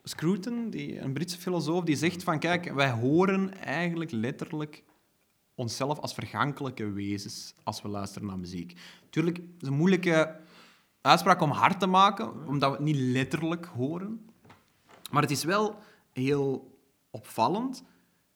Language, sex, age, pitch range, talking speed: Dutch, male, 30-49, 115-170 Hz, 145 wpm